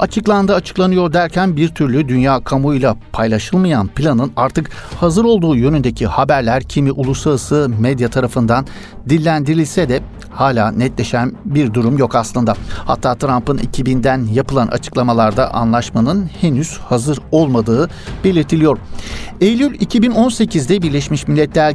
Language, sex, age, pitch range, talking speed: Turkish, male, 60-79, 120-165 Hz, 110 wpm